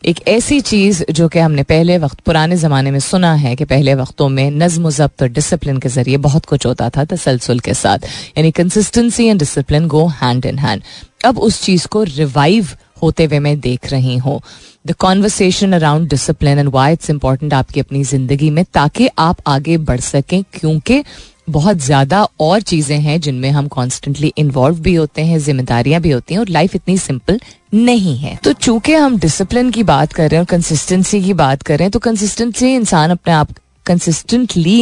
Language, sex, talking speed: Hindi, female, 190 wpm